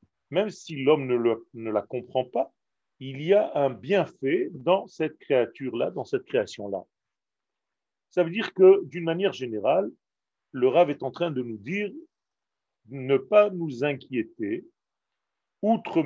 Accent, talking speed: French, 150 wpm